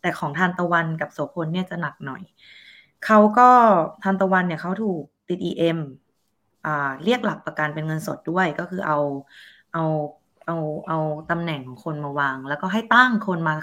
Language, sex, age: Thai, female, 20-39